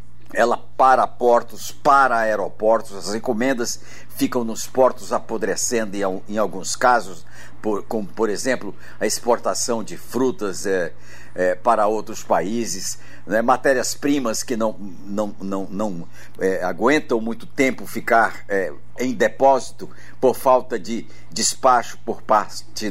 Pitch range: 95-130 Hz